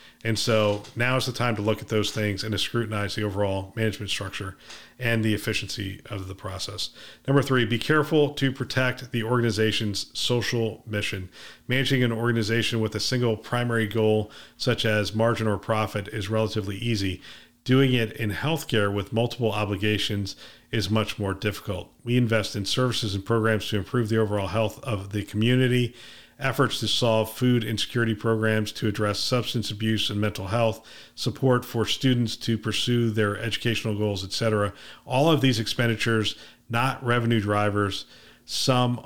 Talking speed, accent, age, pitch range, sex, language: 165 wpm, American, 40-59, 105-120 Hz, male, English